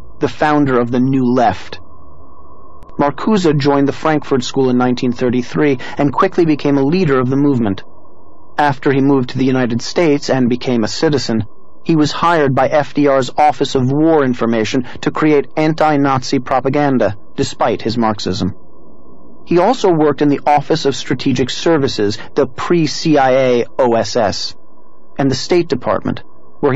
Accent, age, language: American, 30-49, English